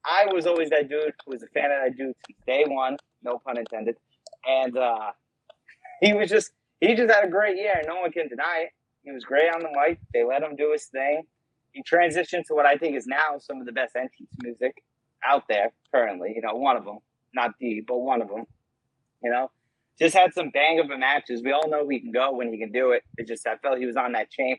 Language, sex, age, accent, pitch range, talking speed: English, male, 30-49, American, 120-155 Hz, 250 wpm